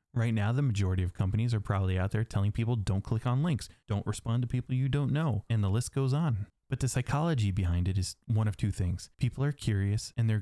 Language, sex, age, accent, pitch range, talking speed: English, male, 20-39, American, 95-120 Hz, 250 wpm